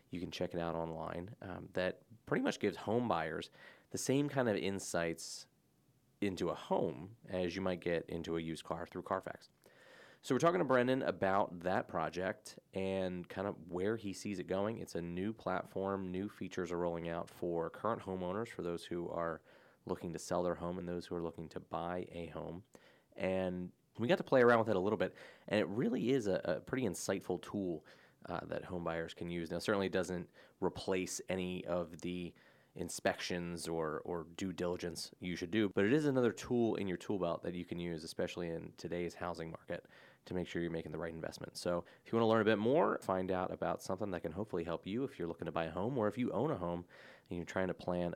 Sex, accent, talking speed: male, American, 225 wpm